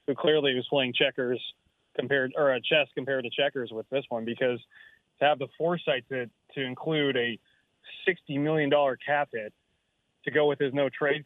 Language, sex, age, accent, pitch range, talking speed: English, male, 30-49, American, 130-165 Hz, 180 wpm